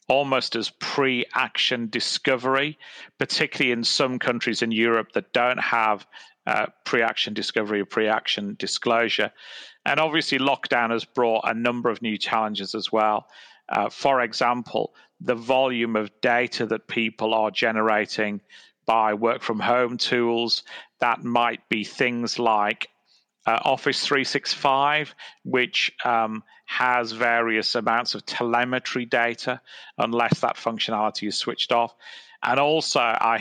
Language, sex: English, male